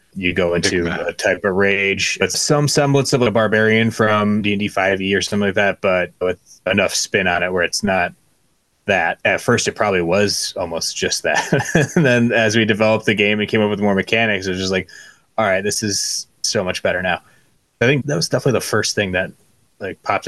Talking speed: 225 wpm